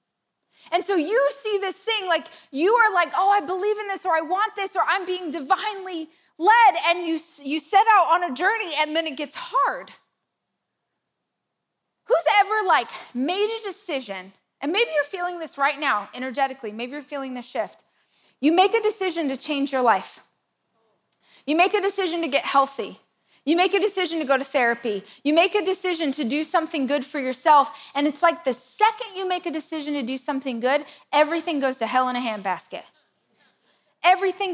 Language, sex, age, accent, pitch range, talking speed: English, female, 20-39, American, 290-375 Hz, 190 wpm